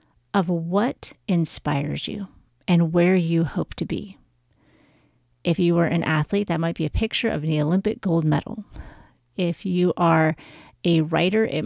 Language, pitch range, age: English, 155-190 Hz, 30-49